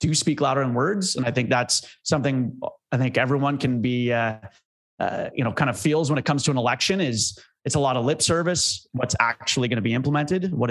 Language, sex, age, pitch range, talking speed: English, male, 30-49, 115-140 Hz, 235 wpm